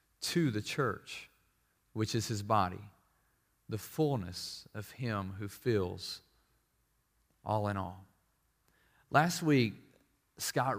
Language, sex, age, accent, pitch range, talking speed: English, male, 30-49, American, 105-135 Hz, 105 wpm